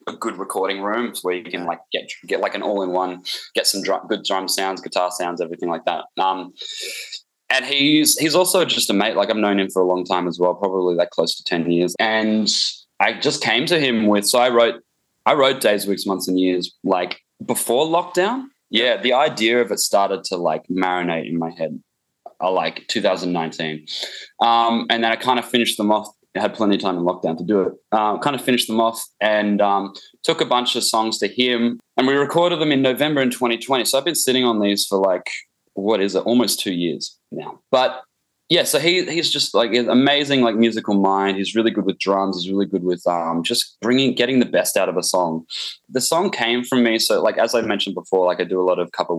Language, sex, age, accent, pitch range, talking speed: English, male, 20-39, Australian, 90-120 Hz, 230 wpm